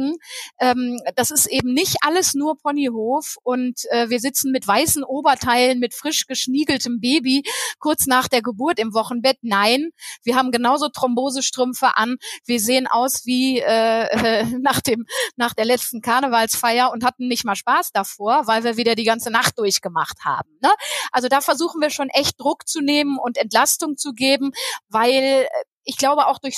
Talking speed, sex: 160 wpm, female